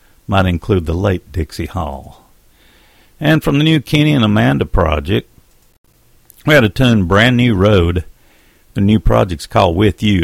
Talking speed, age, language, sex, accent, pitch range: 160 wpm, 60-79, English, male, American, 80-105 Hz